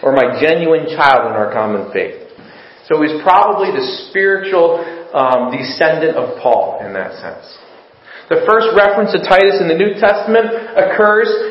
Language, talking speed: English, 155 wpm